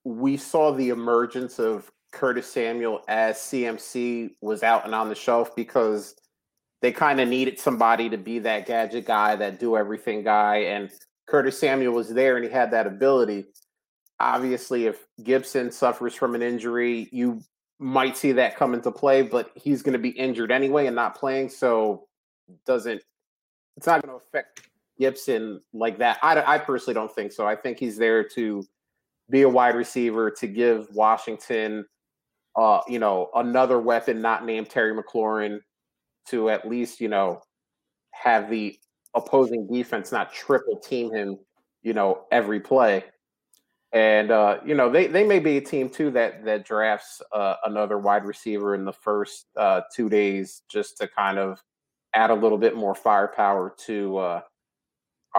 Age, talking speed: 30-49, 165 wpm